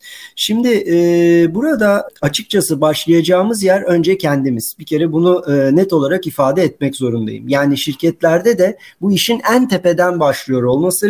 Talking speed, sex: 140 wpm, male